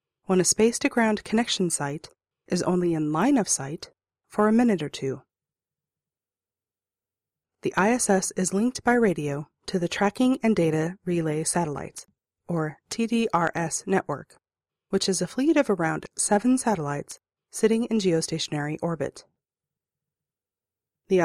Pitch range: 150-205 Hz